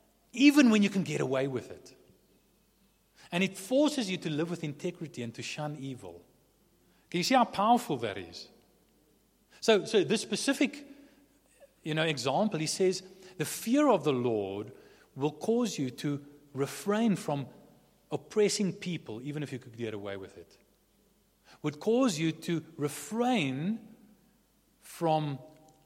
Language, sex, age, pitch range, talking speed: English, male, 40-59, 120-175 Hz, 145 wpm